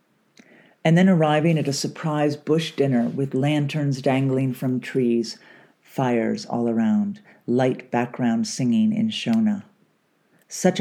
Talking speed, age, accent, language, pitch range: 120 wpm, 50-69, American, English, 125-165 Hz